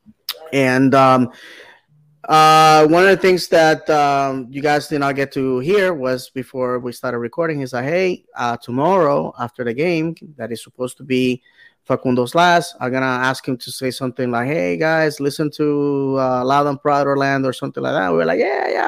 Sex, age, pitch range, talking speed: male, 20-39, 125-150 Hz, 205 wpm